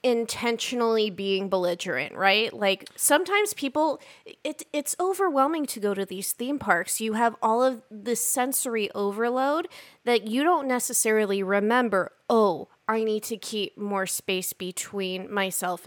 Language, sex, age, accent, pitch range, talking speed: English, female, 20-39, American, 195-255 Hz, 140 wpm